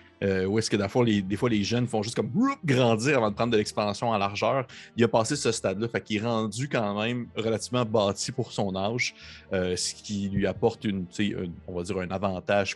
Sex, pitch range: male, 95-115 Hz